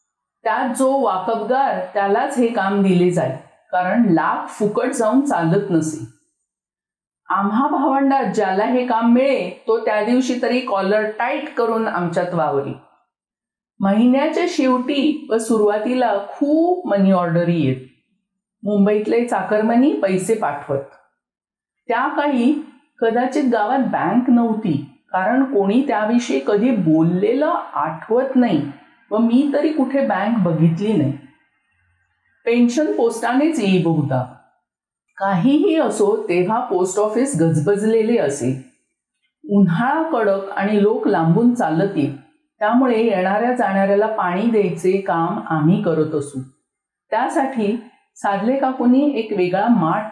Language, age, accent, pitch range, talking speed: Marathi, 50-69, native, 180-255 Hz, 100 wpm